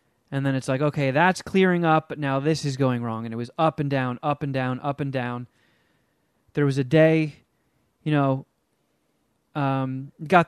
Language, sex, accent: English, male, American